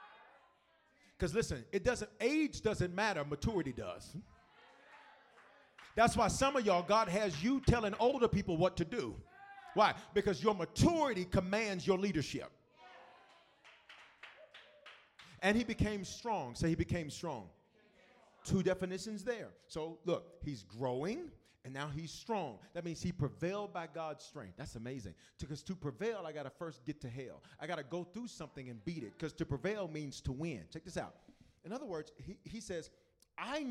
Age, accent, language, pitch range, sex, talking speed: 40-59, American, English, 155-230 Hz, male, 165 wpm